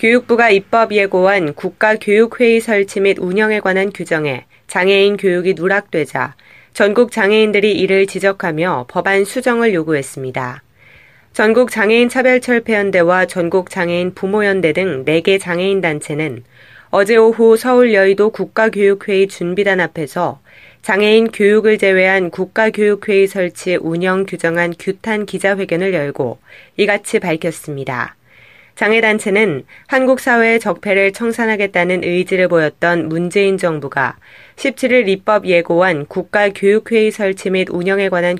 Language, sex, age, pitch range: Korean, female, 20-39, 175-215 Hz